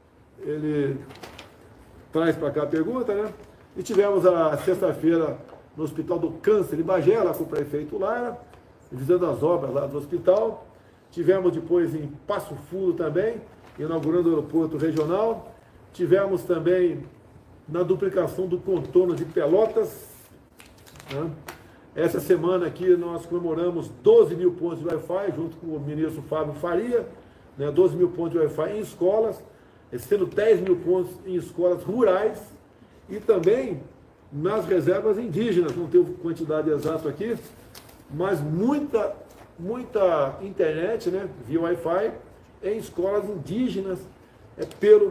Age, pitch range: 50-69, 160-205 Hz